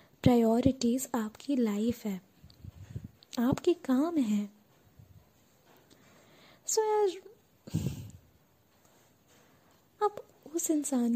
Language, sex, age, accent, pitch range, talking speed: Hindi, female, 20-39, native, 235-290 Hz, 65 wpm